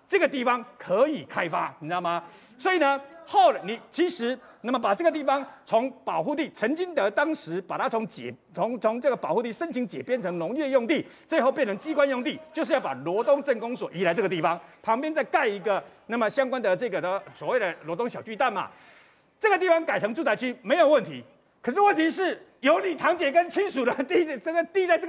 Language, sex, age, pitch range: Chinese, male, 40-59, 230-330 Hz